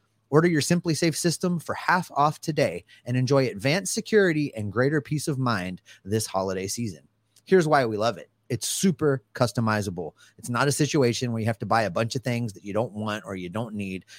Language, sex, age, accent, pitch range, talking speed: English, male, 30-49, American, 110-145 Hz, 210 wpm